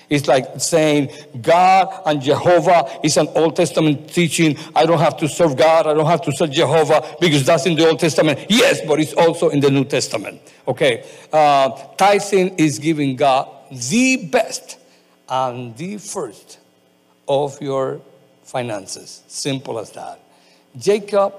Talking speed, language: 155 wpm, Spanish